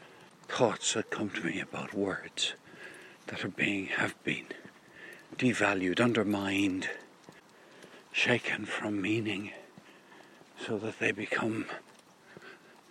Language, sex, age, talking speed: English, male, 60-79, 100 wpm